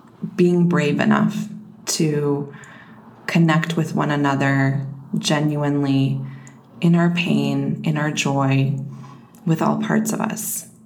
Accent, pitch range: American, 160-205 Hz